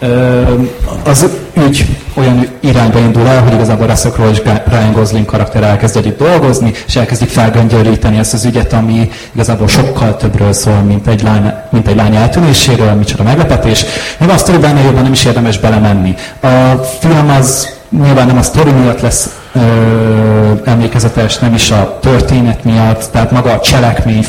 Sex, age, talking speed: male, 30-49, 150 wpm